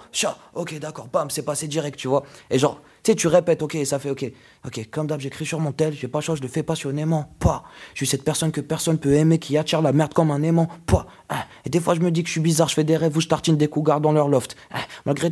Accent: French